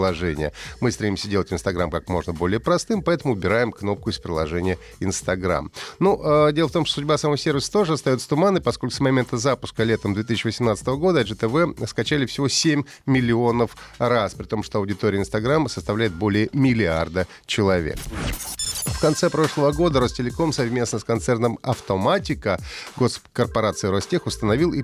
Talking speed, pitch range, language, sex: 150 wpm, 105-145 Hz, Russian, male